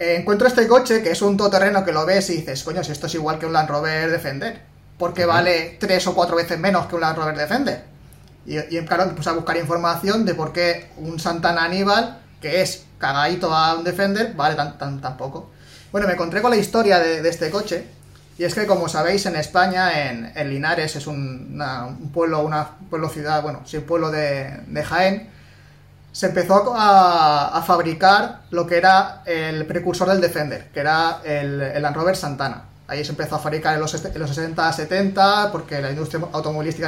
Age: 20-39